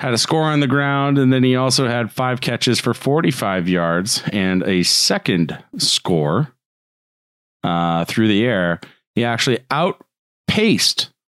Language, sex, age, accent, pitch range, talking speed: English, male, 40-59, American, 90-125 Hz, 145 wpm